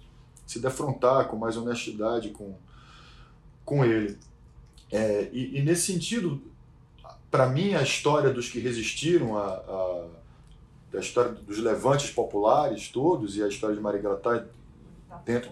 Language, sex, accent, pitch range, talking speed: Portuguese, male, Brazilian, 115-165 Hz, 135 wpm